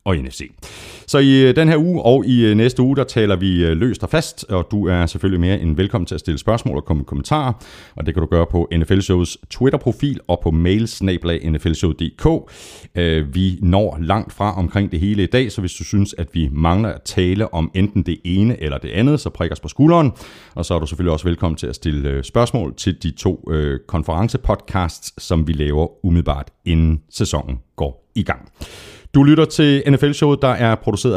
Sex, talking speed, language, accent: male, 200 wpm, Danish, native